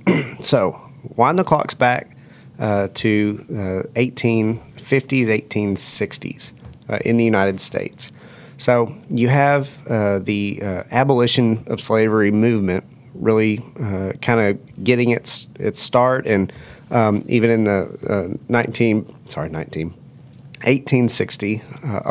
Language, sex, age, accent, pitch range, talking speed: English, male, 30-49, American, 100-125 Hz, 120 wpm